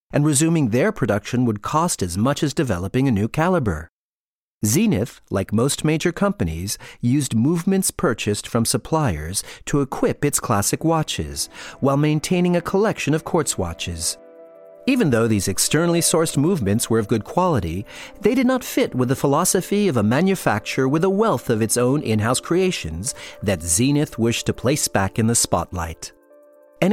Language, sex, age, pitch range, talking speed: English, male, 40-59, 105-160 Hz, 165 wpm